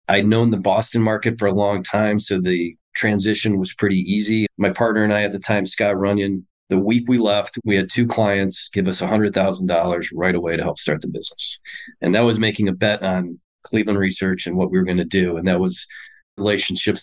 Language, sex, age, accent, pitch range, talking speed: English, male, 40-59, American, 95-115 Hz, 220 wpm